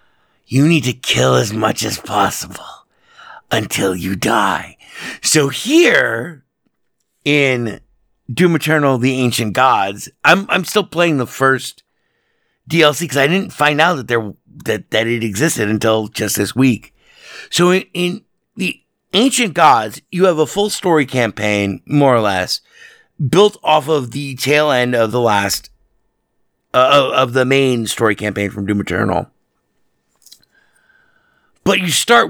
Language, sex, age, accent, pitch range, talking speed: English, male, 50-69, American, 110-175 Hz, 145 wpm